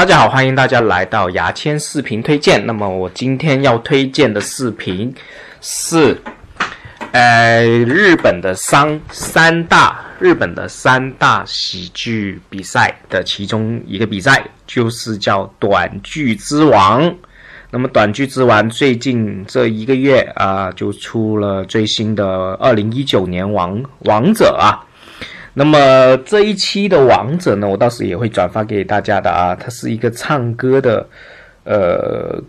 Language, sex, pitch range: Chinese, male, 100-135 Hz